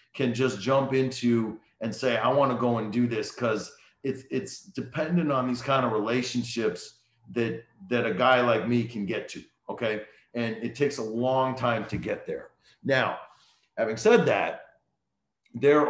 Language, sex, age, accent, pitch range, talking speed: English, male, 40-59, American, 115-135 Hz, 175 wpm